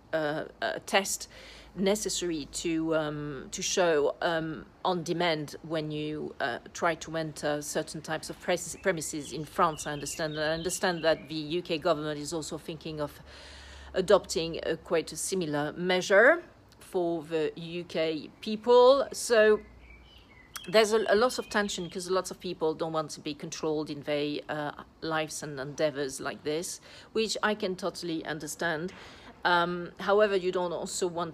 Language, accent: English, French